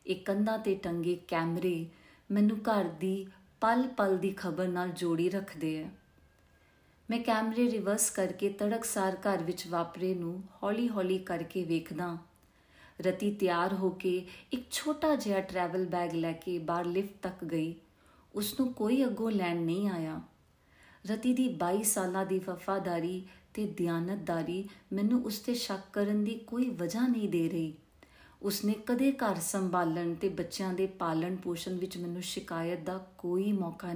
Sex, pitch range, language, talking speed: female, 175-205 Hz, Punjabi, 130 wpm